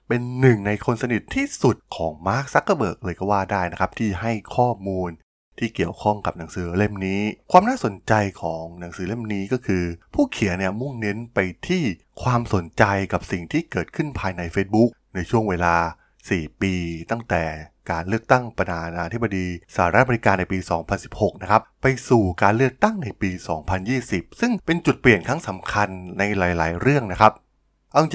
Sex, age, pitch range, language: male, 20-39, 90-120 Hz, Thai